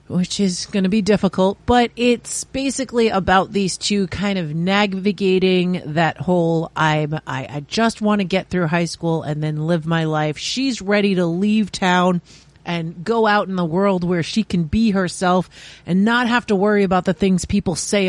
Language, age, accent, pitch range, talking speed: English, 40-59, American, 160-215 Hz, 190 wpm